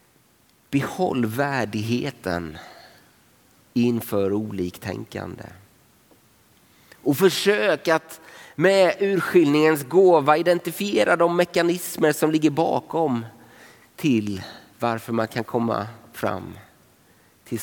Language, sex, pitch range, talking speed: Swedish, male, 100-145 Hz, 80 wpm